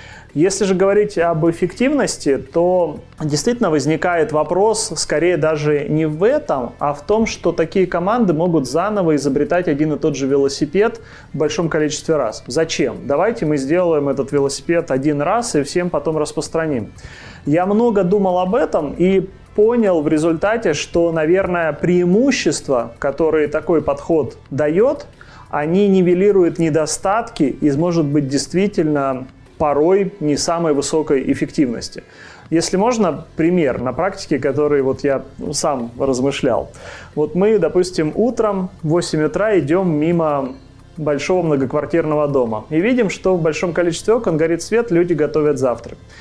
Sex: male